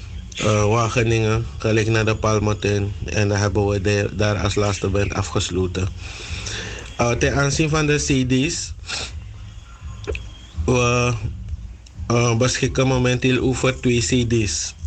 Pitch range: 95-130 Hz